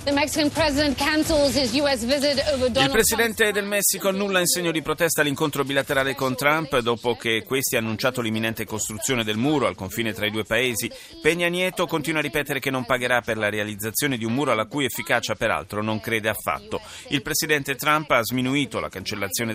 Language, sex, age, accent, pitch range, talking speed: Italian, male, 30-49, native, 115-155 Hz, 170 wpm